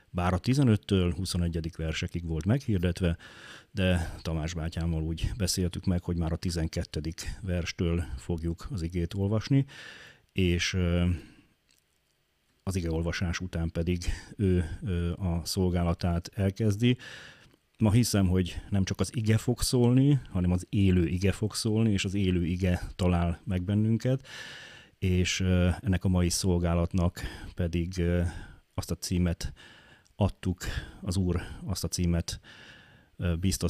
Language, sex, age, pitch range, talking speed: Hungarian, male, 30-49, 85-100 Hz, 125 wpm